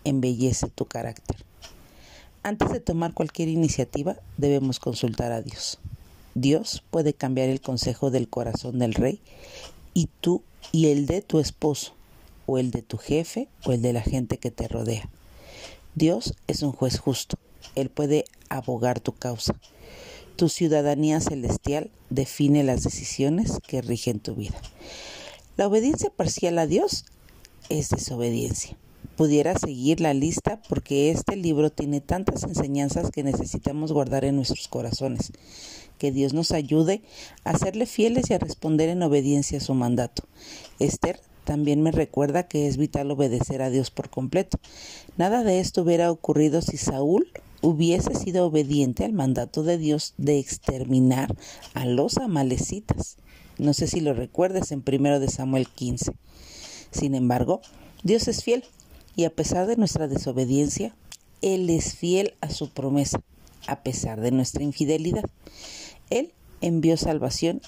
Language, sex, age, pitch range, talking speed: Spanish, female, 50-69, 130-165 Hz, 145 wpm